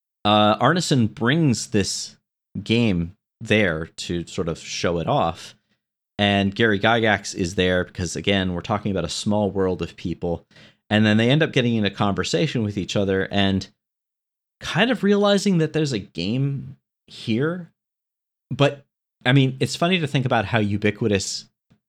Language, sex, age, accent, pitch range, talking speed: English, male, 30-49, American, 100-135 Hz, 160 wpm